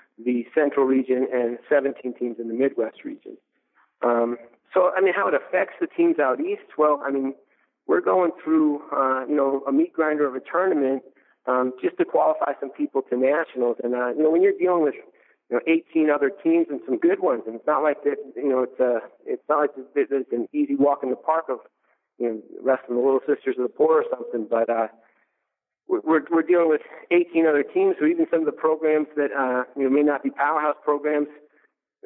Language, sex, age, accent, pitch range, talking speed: English, male, 40-59, American, 130-160 Hz, 220 wpm